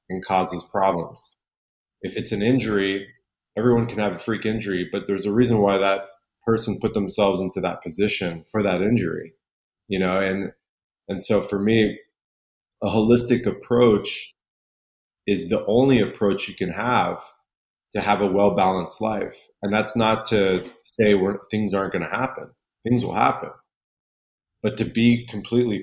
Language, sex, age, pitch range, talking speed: English, male, 30-49, 95-110 Hz, 155 wpm